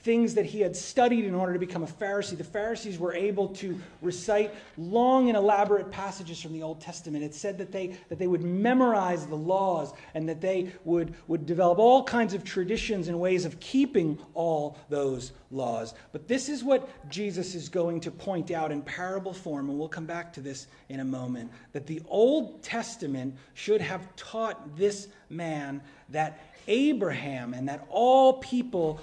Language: English